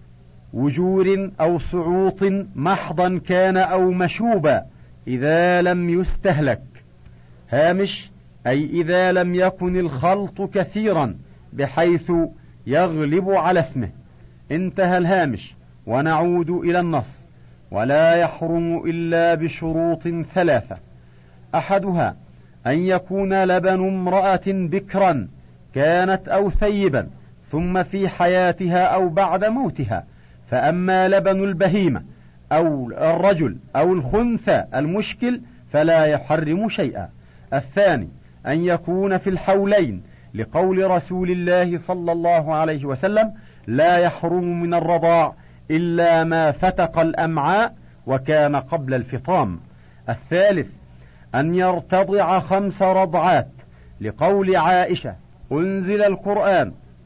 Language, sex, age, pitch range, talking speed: Arabic, male, 50-69, 140-185 Hz, 95 wpm